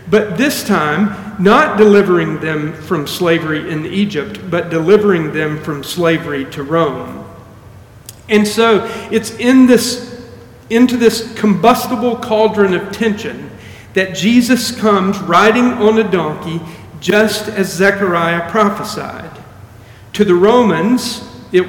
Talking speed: 120 wpm